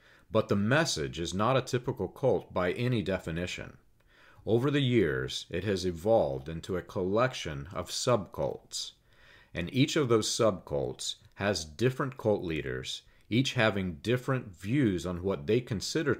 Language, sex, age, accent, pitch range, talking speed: English, male, 50-69, American, 85-115 Hz, 145 wpm